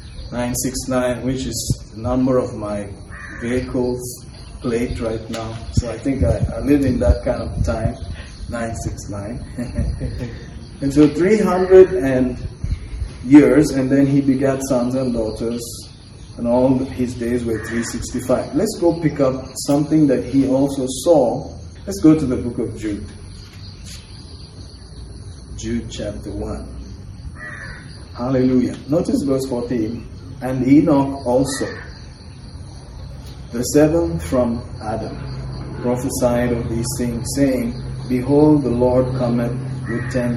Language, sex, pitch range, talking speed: English, male, 110-130 Hz, 120 wpm